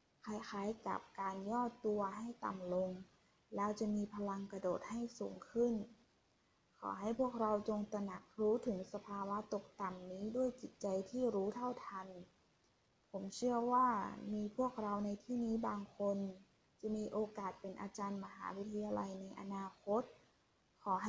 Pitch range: 195-230 Hz